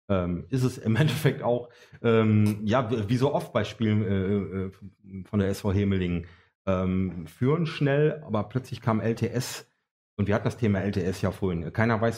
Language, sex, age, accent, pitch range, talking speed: German, male, 30-49, German, 100-120 Hz, 175 wpm